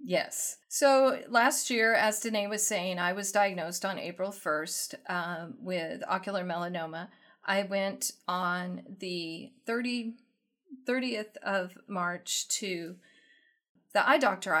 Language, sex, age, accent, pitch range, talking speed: English, female, 40-59, American, 175-210 Hz, 120 wpm